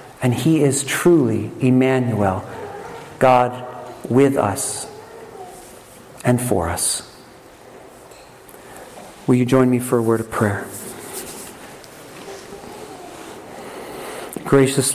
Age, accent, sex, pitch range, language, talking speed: 50-69, American, male, 125-160 Hz, English, 85 wpm